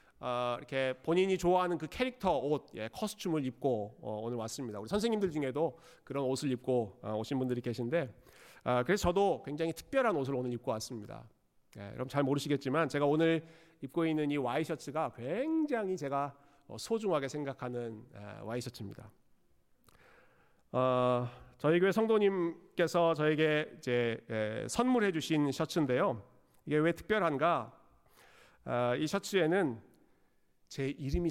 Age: 40-59